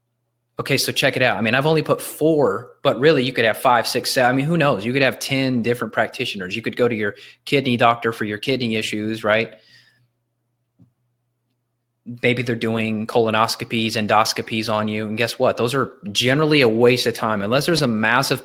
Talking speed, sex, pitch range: 200 wpm, male, 120-145 Hz